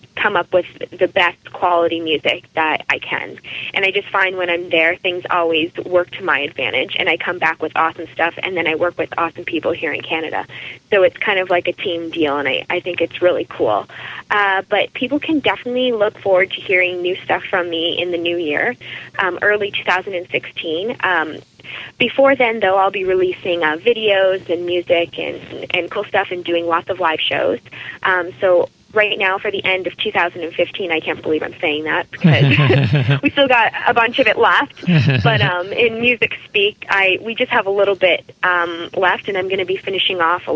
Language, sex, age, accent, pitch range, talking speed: English, female, 20-39, American, 165-195 Hz, 210 wpm